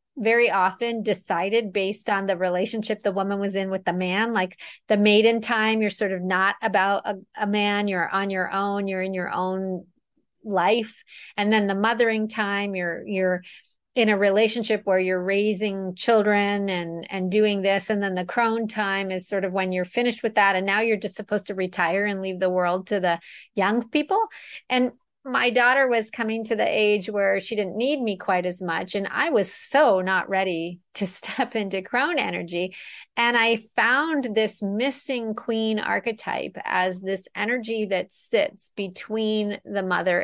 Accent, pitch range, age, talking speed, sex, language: American, 185-220 Hz, 40-59, 185 wpm, female, English